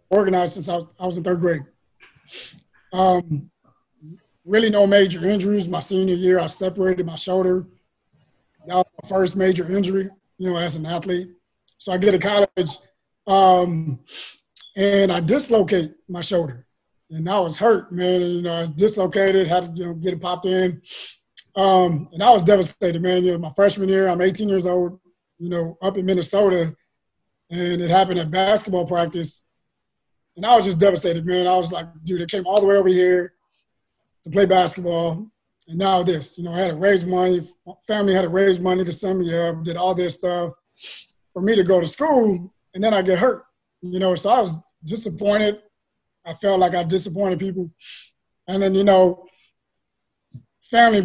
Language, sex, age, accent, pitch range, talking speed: English, male, 20-39, American, 175-195 Hz, 185 wpm